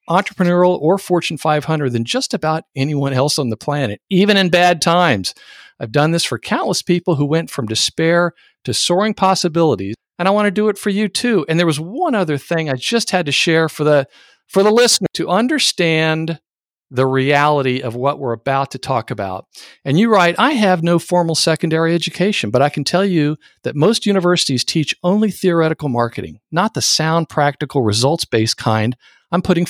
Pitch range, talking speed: 130-180 Hz, 190 wpm